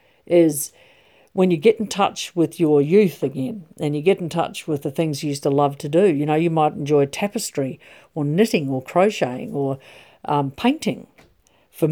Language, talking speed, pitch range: English, 190 wpm, 140-175 Hz